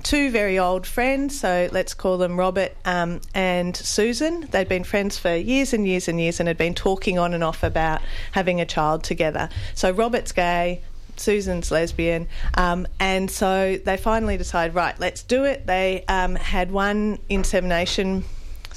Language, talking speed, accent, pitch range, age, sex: English, 170 wpm, Australian, 175-215 Hz, 40-59, female